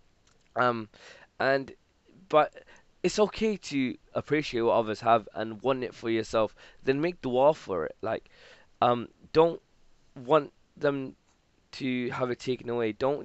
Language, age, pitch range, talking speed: English, 10-29, 110-130 Hz, 145 wpm